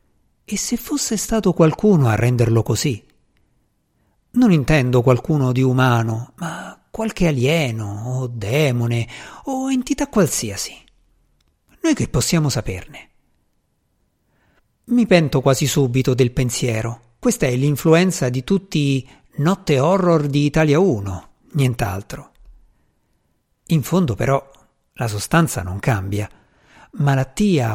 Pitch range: 120-180 Hz